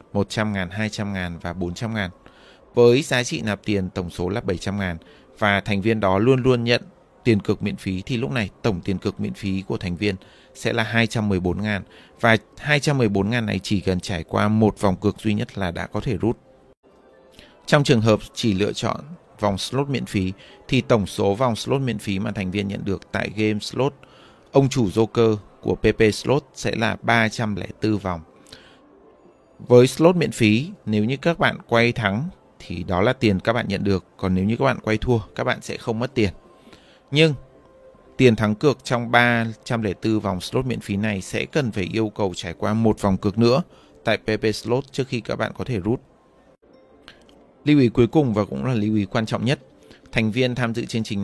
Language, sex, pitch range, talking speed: Vietnamese, male, 100-120 Hz, 205 wpm